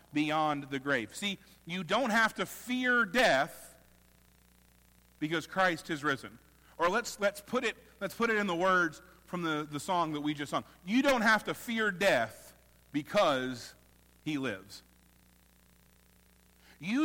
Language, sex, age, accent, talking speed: English, male, 50-69, American, 150 wpm